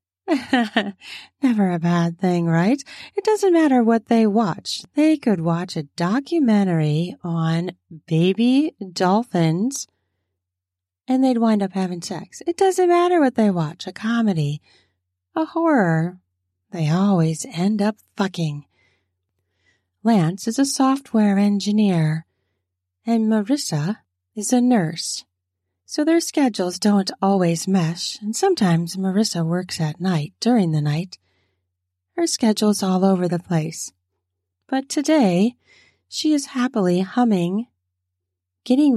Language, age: English, 30-49